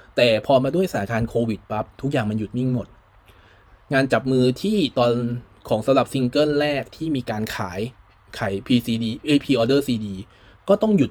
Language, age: Thai, 20-39